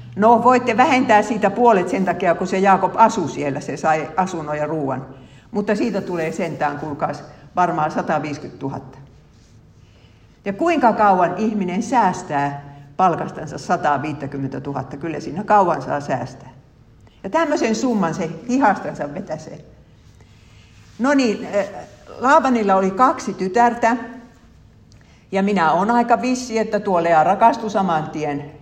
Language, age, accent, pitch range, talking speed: Finnish, 60-79, native, 145-215 Hz, 130 wpm